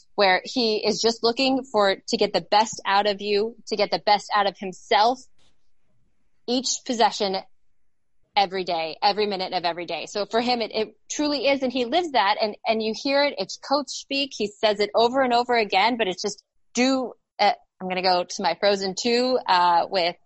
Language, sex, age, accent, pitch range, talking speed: English, female, 20-39, American, 185-230 Hz, 205 wpm